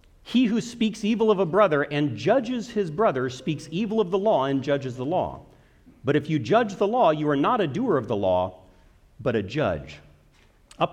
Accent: American